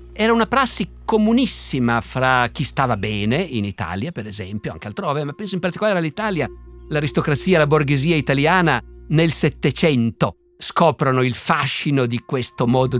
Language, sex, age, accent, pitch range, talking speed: Italian, male, 50-69, native, 125-180 Hz, 150 wpm